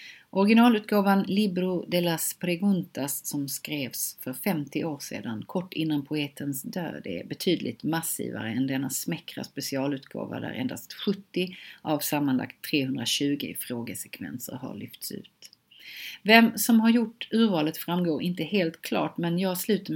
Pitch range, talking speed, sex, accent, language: 140-185 Hz, 130 wpm, female, native, Swedish